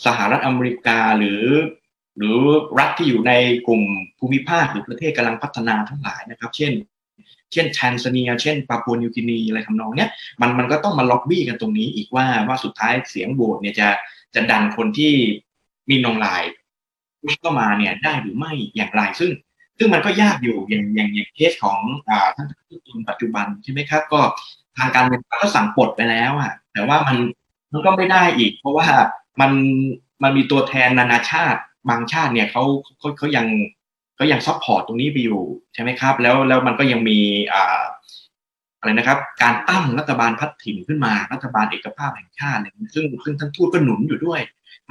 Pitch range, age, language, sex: 115-155 Hz, 20-39, Thai, male